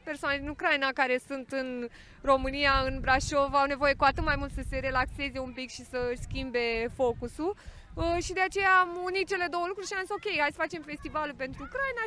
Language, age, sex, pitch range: Romanian, 20-39, female, 255-335 Hz